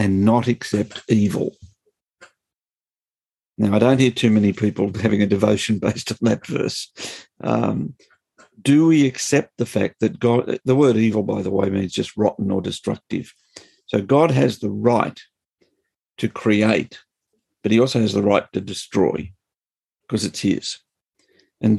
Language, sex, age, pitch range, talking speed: English, male, 50-69, 105-125 Hz, 155 wpm